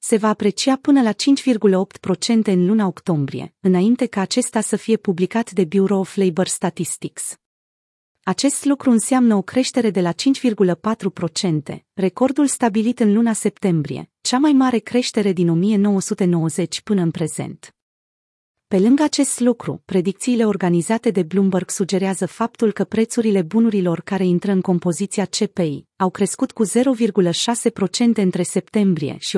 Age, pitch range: 30-49, 180-225 Hz